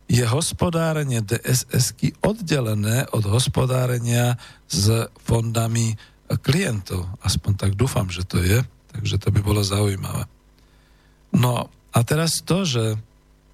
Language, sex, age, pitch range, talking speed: Slovak, male, 50-69, 110-135 Hz, 110 wpm